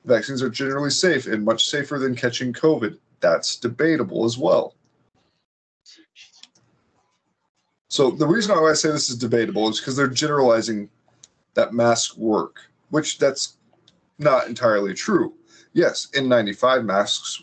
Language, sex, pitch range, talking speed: English, male, 115-175 Hz, 130 wpm